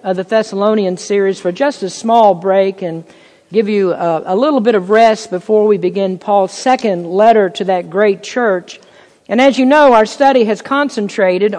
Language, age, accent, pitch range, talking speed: English, 50-69, American, 195-245 Hz, 180 wpm